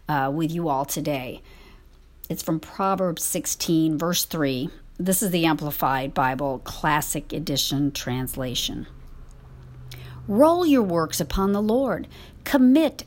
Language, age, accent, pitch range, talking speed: English, 50-69, American, 145-220 Hz, 120 wpm